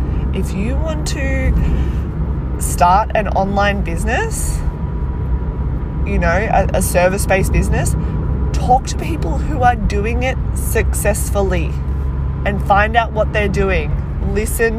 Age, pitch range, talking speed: 20-39, 70-75 Hz, 120 wpm